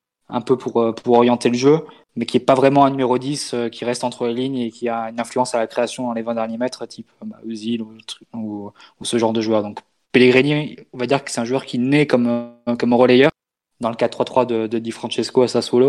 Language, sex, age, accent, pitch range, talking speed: French, male, 20-39, French, 115-130 Hz, 260 wpm